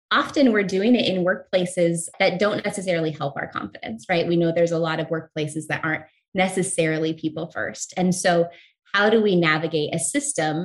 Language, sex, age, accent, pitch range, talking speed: English, female, 20-39, American, 155-185 Hz, 185 wpm